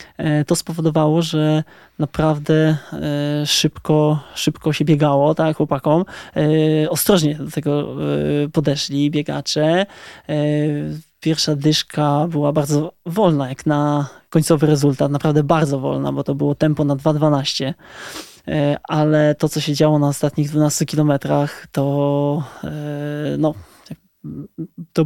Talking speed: 110 wpm